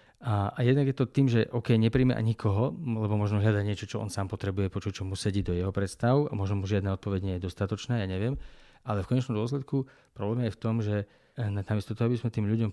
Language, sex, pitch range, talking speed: Slovak, male, 100-120 Hz, 220 wpm